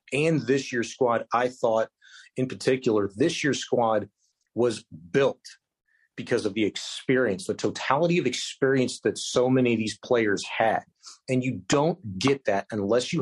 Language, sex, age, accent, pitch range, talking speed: English, male, 40-59, American, 110-135 Hz, 160 wpm